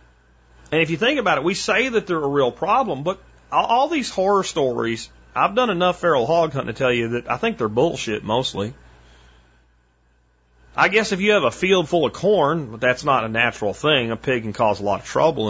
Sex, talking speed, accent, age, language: male, 215 wpm, American, 30-49, English